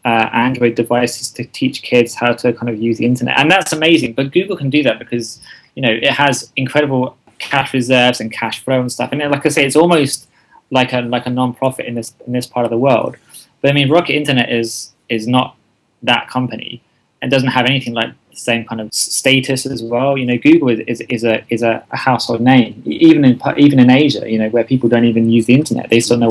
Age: 20-39